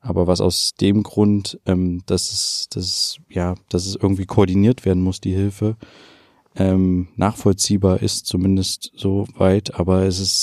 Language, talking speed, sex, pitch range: German, 155 wpm, male, 90-100 Hz